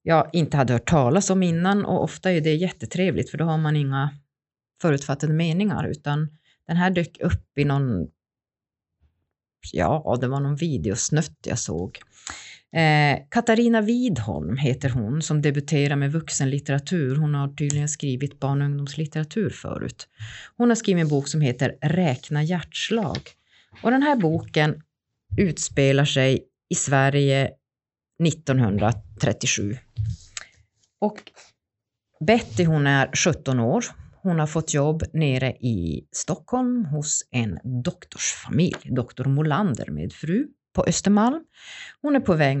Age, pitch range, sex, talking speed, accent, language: 30-49, 130-175 Hz, female, 135 wpm, native, Swedish